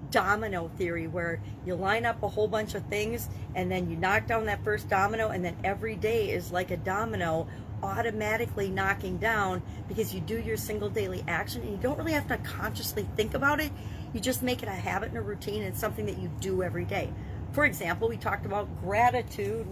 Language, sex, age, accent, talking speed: English, female, 40-59, American, 215 wpm